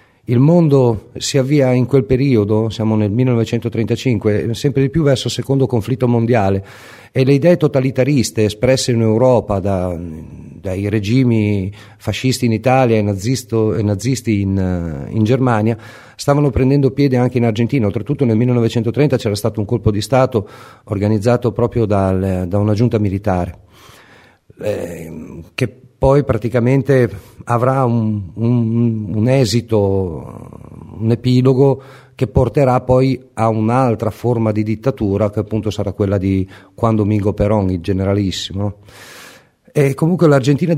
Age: 40-59